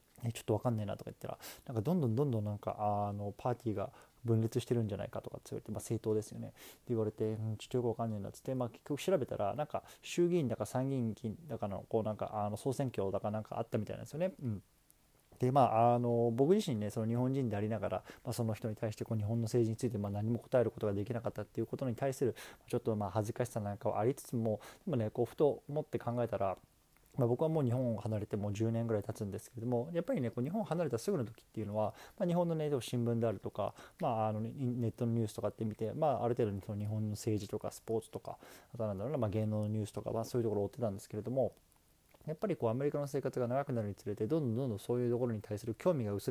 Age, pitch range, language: 20-39, 105-125 Hz, Japanese